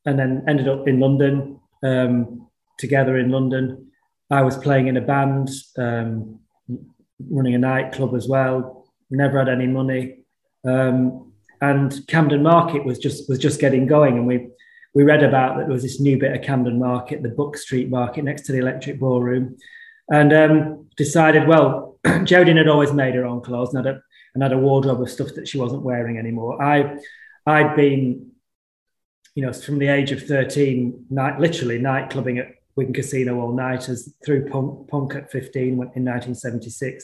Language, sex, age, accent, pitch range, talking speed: English, male, 20-39, British, 130-150 Hz, 180 wpm